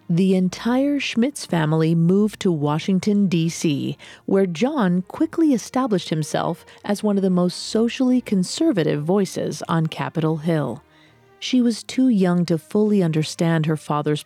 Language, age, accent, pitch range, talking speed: English, 40-59, American, 160-230 Hz, 140 wpm